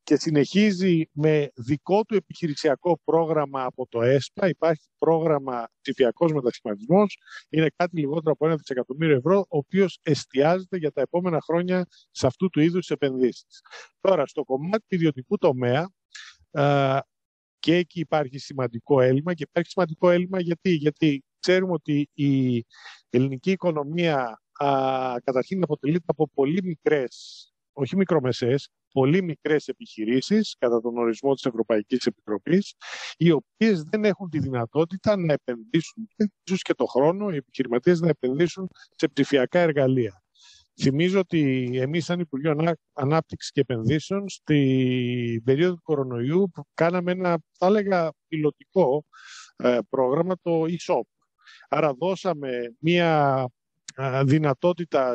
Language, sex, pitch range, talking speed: Greek, male, 130-175 Hz, 125 wpm